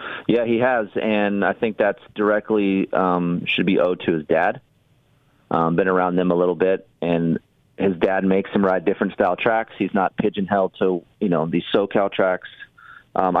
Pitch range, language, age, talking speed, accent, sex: 95-120 Hz, English, 30-49, 185 wpm, American, male